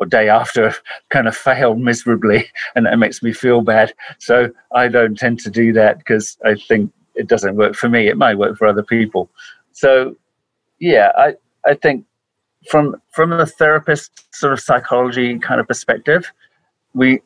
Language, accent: English, British